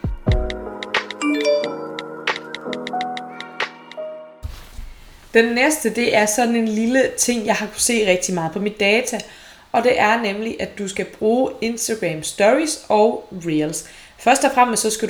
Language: Danish